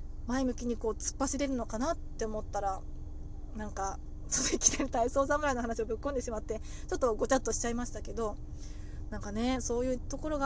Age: 20-39